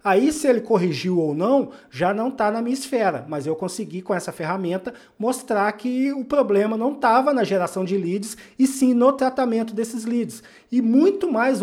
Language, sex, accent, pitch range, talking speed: Portuguese, male, Brazilian, 185-240 Hz, 190 wpm